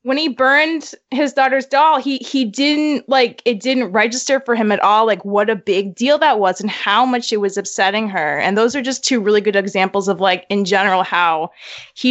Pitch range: 200-265 Hz